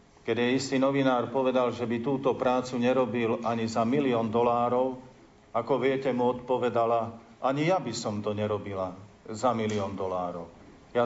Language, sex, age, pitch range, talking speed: Slovak, male, 50-69, 115-150 Hz, 145 wpm